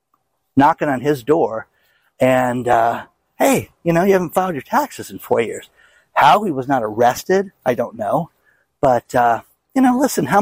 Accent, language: American, English